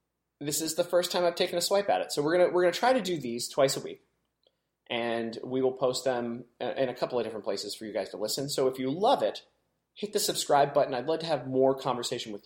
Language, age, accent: English, 30-49, American